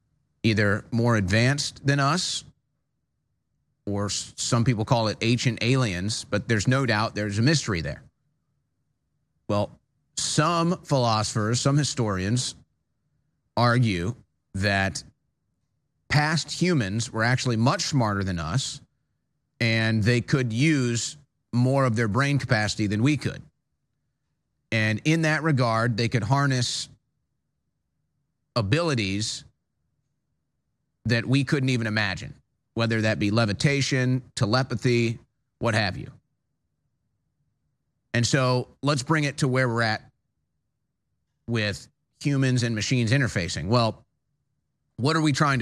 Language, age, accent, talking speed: English, 30-49, American, 115 wpm